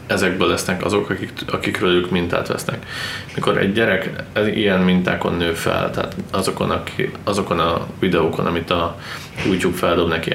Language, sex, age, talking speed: Hungarian, male, 20-39, 150 wpm